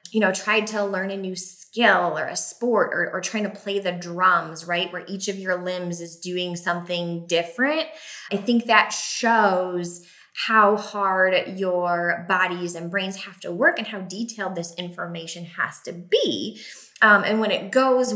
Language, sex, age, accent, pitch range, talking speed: English, female, 20-39, American, 170-210 Hz, 180 wpm